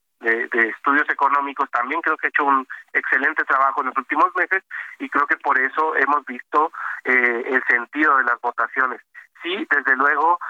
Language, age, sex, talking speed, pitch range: Spanish, 40-59, male, 185 wpm, 135-160 Hz